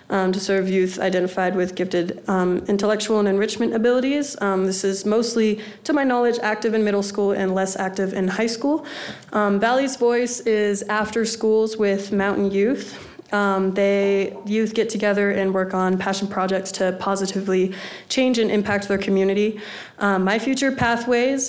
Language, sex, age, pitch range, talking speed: English, female, 20-39, 185-215 Hz, 165 wpm